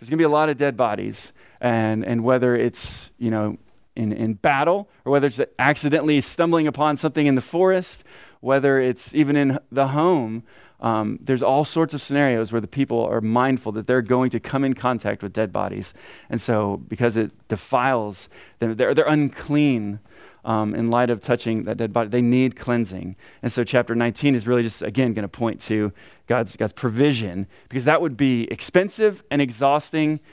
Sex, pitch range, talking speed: male, 110-140 Hz, 190 wpm